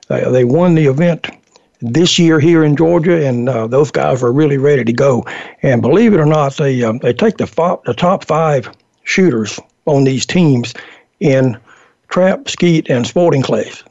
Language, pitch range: English, 130-170 Hz